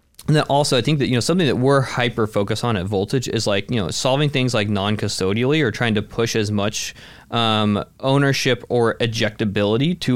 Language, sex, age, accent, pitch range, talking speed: English, male, 20-39, American, 105-130 Hz, 205 wpm